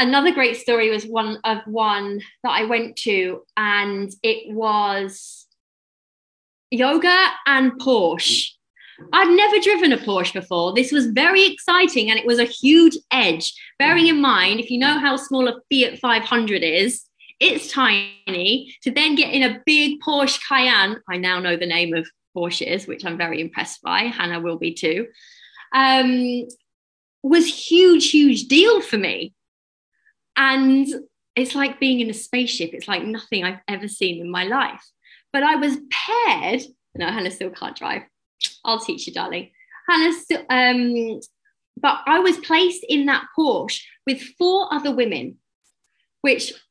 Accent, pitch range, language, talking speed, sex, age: British, 220-320 Hz, English, 160 wpm, female, 20-39